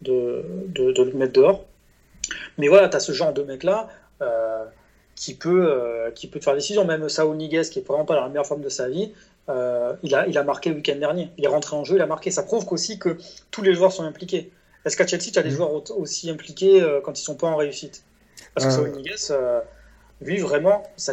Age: 30-49